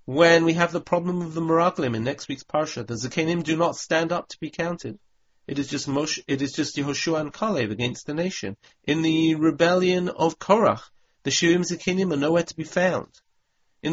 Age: 40-59